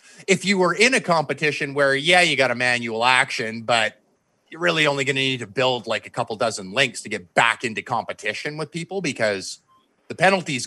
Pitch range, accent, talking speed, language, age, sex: 120-160 Hz, American, 210 wpm, English, 30-49, male